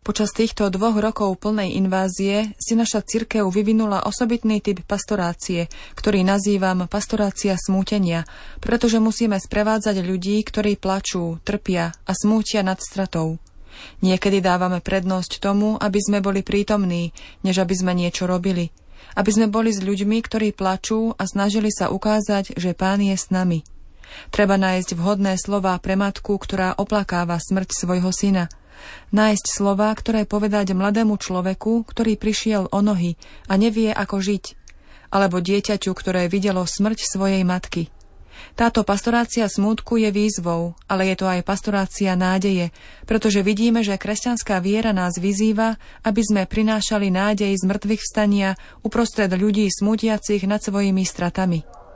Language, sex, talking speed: Slovak, female, 140 wpm